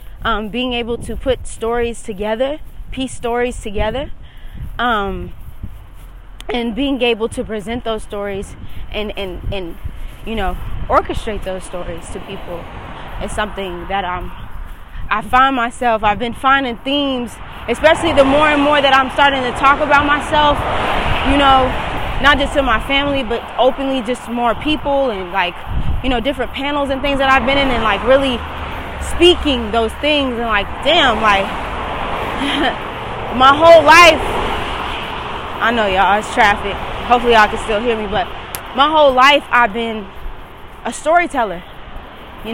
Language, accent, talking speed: English, American, 150 wpm